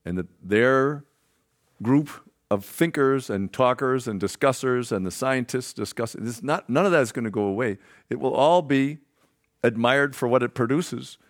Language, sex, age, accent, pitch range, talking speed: English, male, 50-69, American, 95-130 Hz, 185 wpm